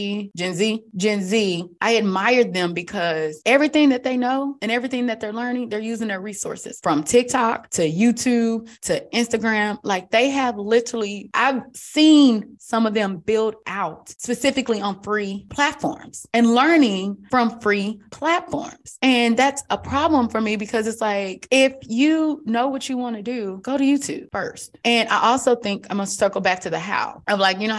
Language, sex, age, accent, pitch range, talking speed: English, female, 20-39, American, 205-260 Hz, 180 wpm